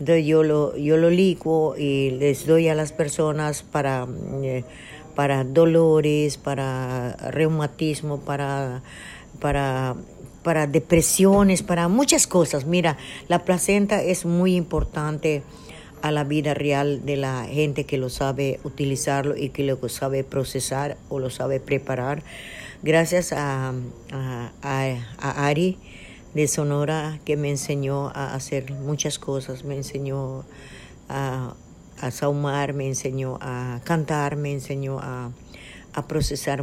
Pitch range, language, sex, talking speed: 135-155 Hz, Spanish, female, 125 wpm